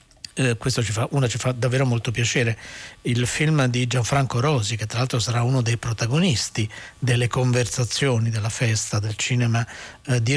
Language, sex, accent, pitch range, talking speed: Italian, male, native, 115-135 Hz, 170 wpm